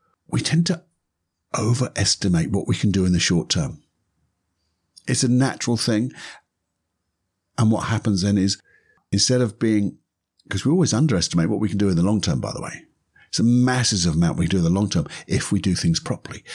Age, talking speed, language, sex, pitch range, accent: 50-69, 200 wpm, English, male, 90-125 Hz, British